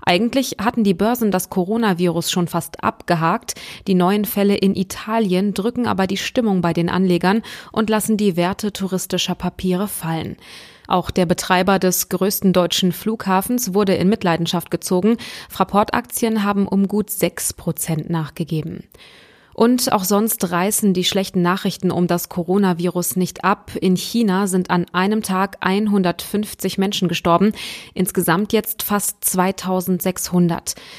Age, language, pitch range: 20-39, German, 175-205 Hz